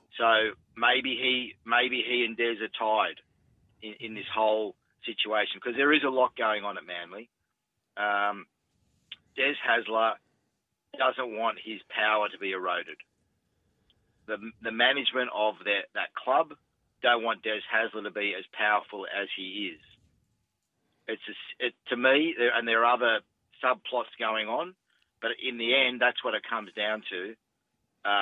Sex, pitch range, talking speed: male, 105-125 Hz, 160 wpm